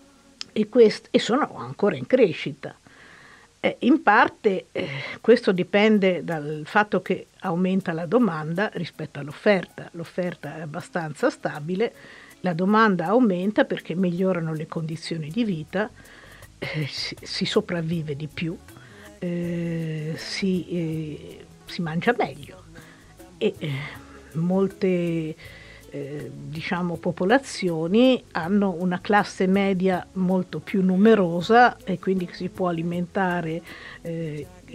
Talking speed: 110 wpm